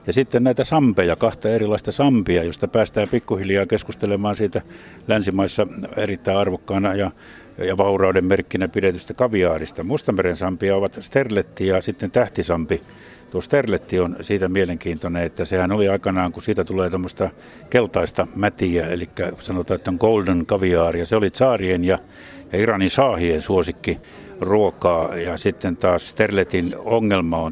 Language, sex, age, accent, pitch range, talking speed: Finnish, male, 60-79, native, 85-100 Hz, 135 wpm